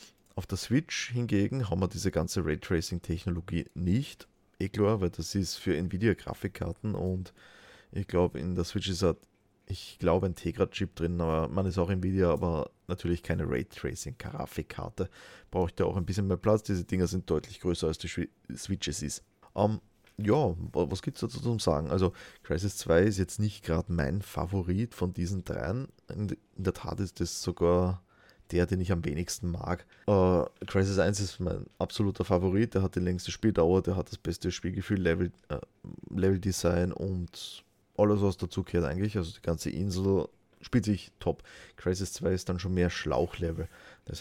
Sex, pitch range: male, 85-100 Hz